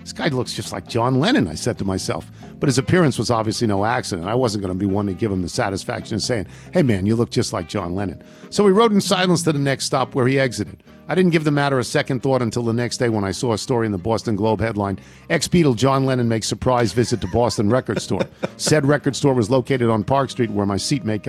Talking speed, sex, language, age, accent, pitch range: 265 wpm, male, English, 50-69, American, 105-130 Hz